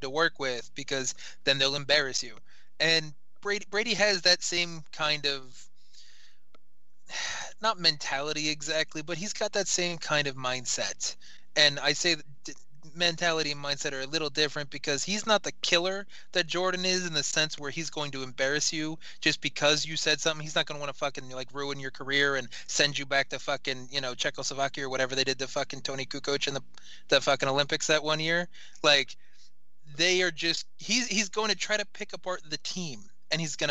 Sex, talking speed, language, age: male, 200 wpm, English, 20-39